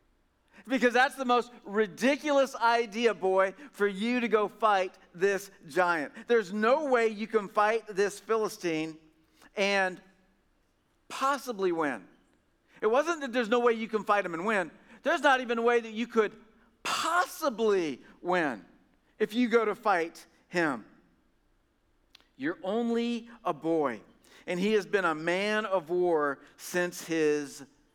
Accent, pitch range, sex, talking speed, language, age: American, 185-235 Hz, male, 145 wpm, English, 50-69